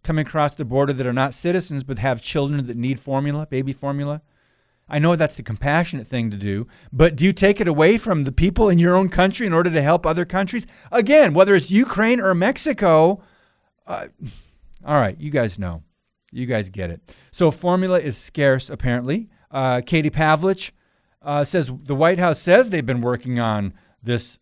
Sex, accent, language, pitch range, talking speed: male, American, English, 120-160 Hz, 190 wpm